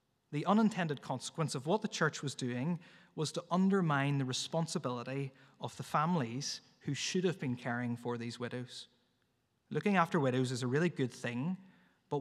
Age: 20-39